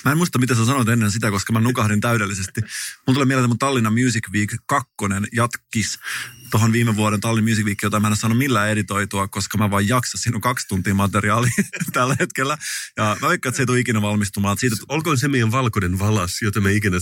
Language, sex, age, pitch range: Finnish, male, 30-49, 105-130 Hz